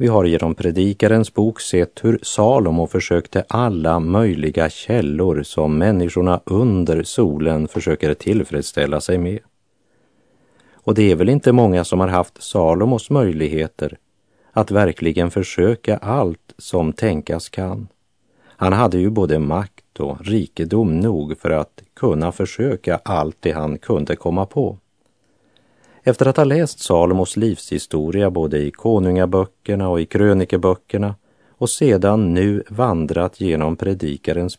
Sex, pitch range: male, 85-105 Hz